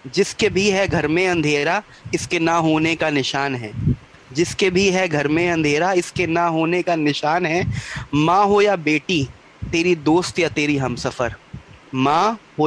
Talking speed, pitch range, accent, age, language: 175 wpm, 135-170 Hz, Indian, 20-39, English